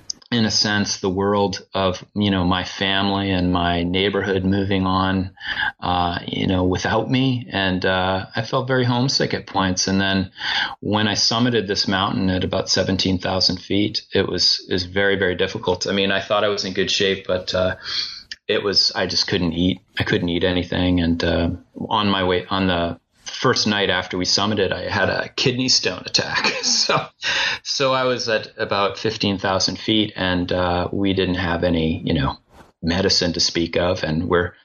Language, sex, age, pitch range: English, male, 30-49, 90-110 Hz